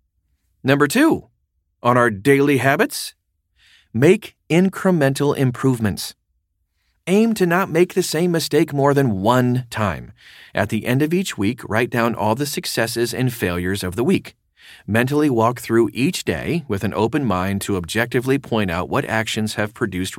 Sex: male